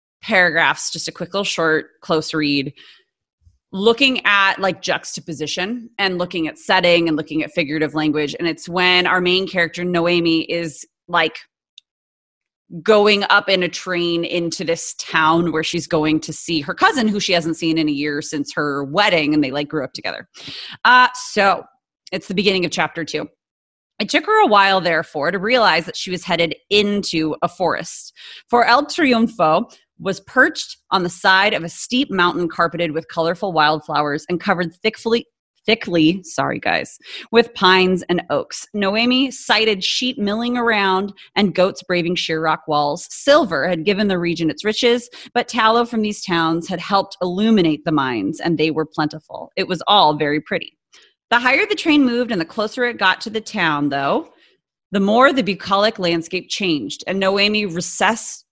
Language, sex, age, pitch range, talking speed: English, female, 30-49, 160-210 Hz, 175 wpm